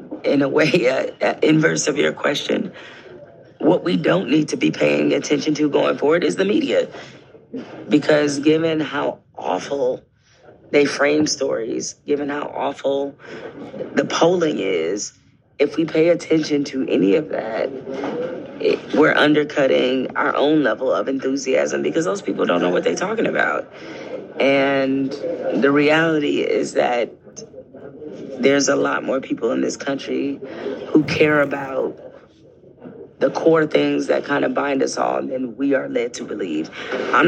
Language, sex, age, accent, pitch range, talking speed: English, female, 30-49, American, 130-150 Hz, 150 wpm